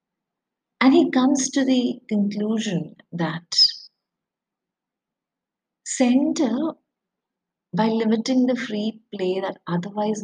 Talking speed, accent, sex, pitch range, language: 90 wpm, Indian, female, 180-250 Hz, English